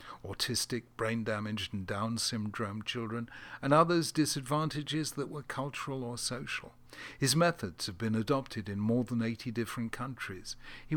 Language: English